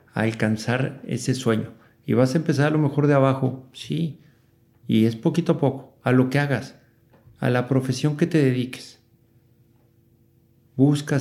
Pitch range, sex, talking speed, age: 115-135 Hz, male, 160 wpm, 50-69